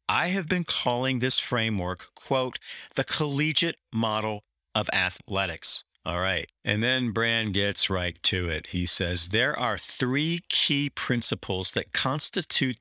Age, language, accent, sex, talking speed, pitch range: 50-69, English, American, male, 140 wpm, 95-140 Hz